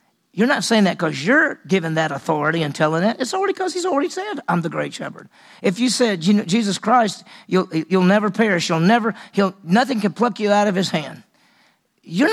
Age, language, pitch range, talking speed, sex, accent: 50-69, English, 165-220 Hz, 220 wpm, male, American